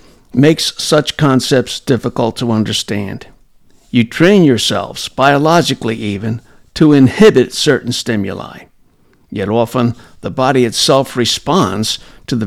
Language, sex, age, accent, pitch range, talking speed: English, male, 60-79, American, 115-150 Hz, 110 wpm